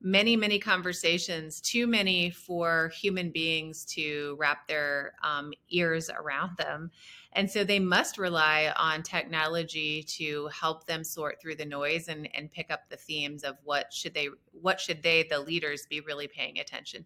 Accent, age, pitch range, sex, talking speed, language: American, 30-49, 160-190 Hz, female, 170 wpm, English